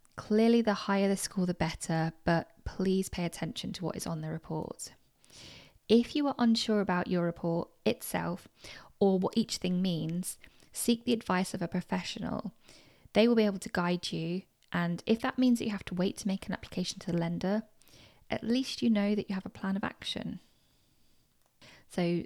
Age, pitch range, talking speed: 10-29, 170-210 Hz, 190 wpm